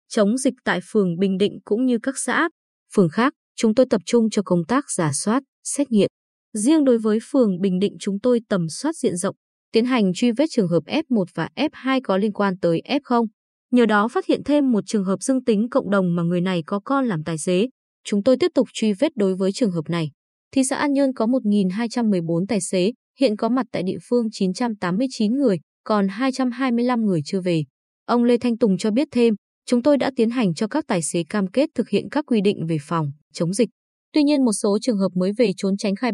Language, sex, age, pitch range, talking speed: Vietnamese, female, 20-39, 190-255 Hz, 230 wpm